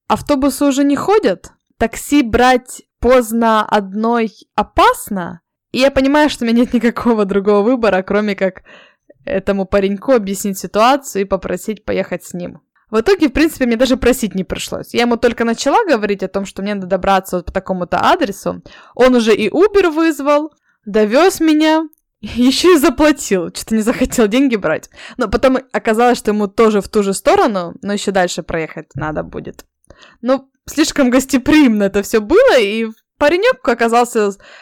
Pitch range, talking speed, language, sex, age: 195-265 Hz, 160 wpm, Russian, female, 20-39